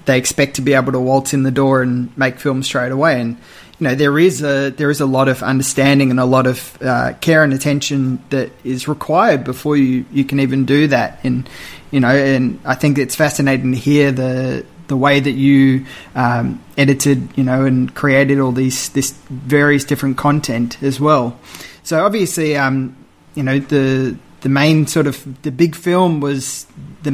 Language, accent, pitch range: English, Australian, 130-150 Hz